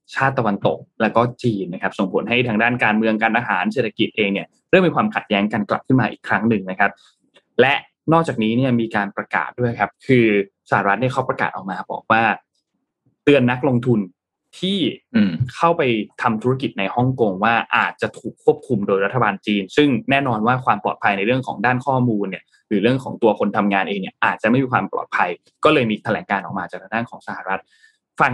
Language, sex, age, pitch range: Thai, male, 20-39, 110-140 Hz